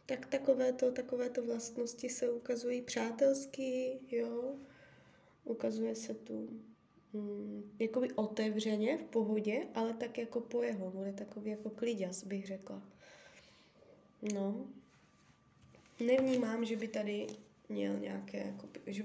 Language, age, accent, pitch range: Czech, 20-39, native, 210-250 Hz